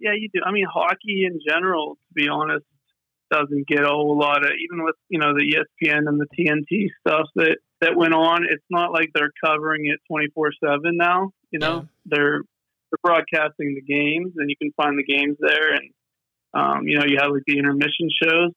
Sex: male